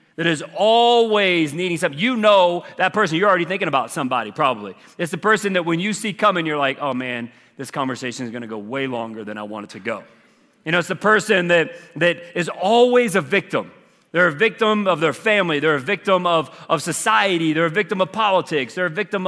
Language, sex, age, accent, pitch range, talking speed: English, male, 30-49, American, 155-210 Hz, 220 wpm